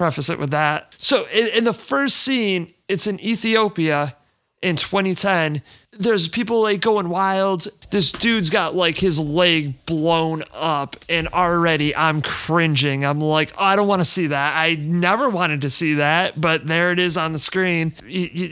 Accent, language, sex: American, English, male